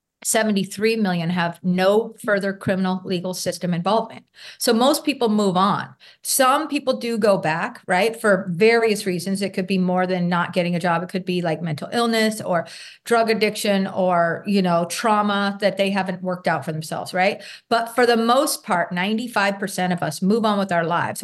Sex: female